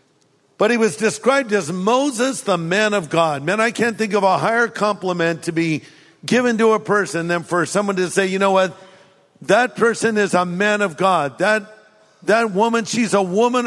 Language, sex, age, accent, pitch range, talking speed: English, male, 50-69, American, 155-205 Hz, 200 wpm